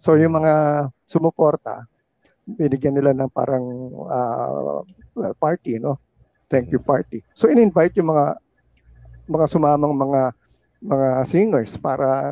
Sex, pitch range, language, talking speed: male, 130-180 Hz, Filipino, 115 wpm